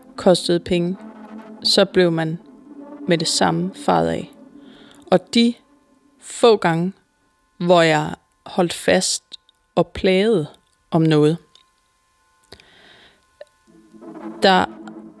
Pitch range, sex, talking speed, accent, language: 165-205 Hz, female, 90 wpm, native, Danish